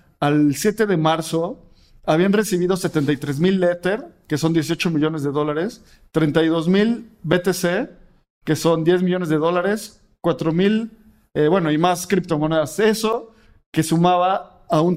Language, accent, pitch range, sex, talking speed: Spanish, Mexican, 160-200 Hz, male, 145 wpm